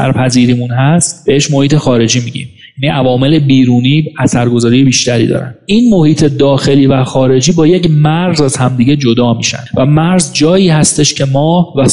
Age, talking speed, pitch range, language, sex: 40-59, 150 wpm, 130-160 Hz, Persian, male